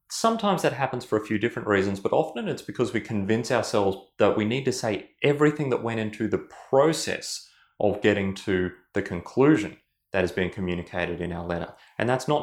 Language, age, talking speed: English, 30-49, 200 wpm